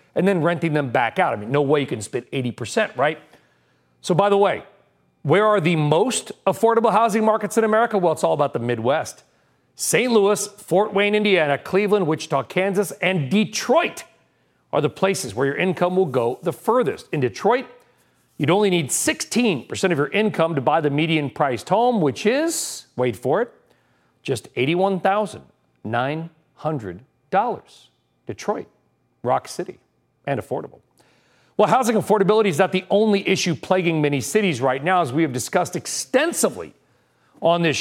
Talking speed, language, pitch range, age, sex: 160 wpm, English, 150-205 Hz, 40-59, male